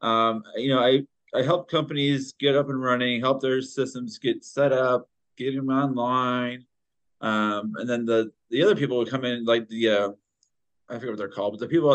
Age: 30-49